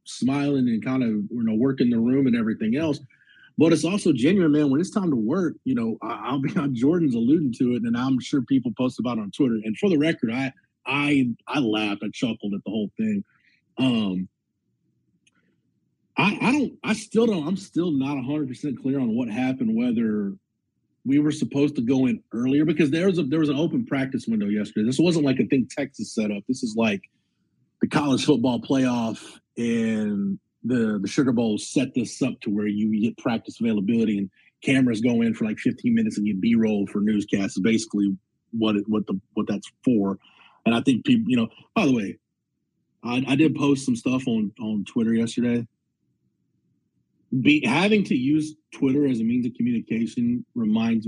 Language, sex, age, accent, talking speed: English, male, 30-49, American, 200 wpm